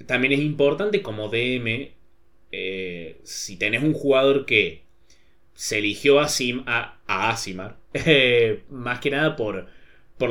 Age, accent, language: 20-39, Argentinian, Spanish